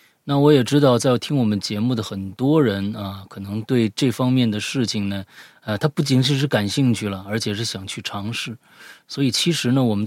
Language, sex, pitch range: Chinese, male, 105-145 Hz